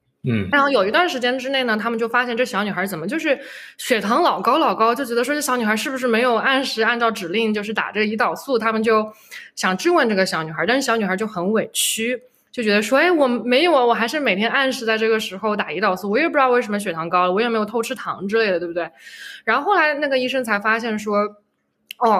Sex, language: female, Chinese